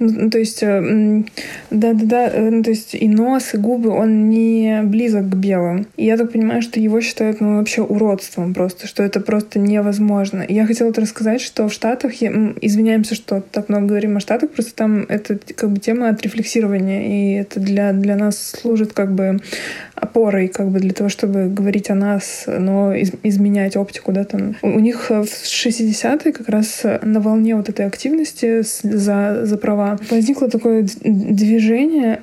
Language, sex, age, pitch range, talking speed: Russian, female, 20-39, 205-230 Hz, 175 wpm